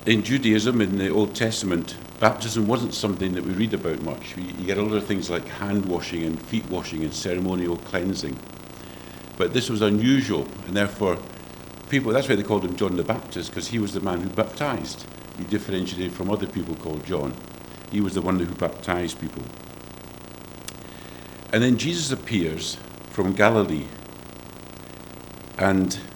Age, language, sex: 50-69, English, male